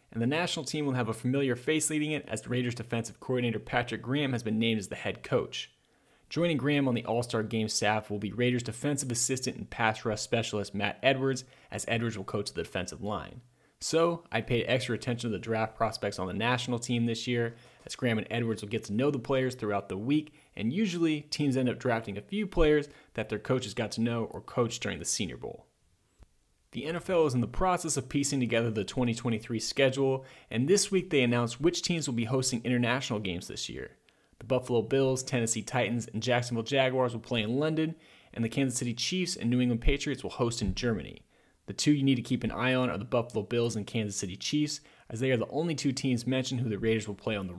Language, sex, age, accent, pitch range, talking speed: English, male, 30-49, American, 110-135 Hz, 230 wpm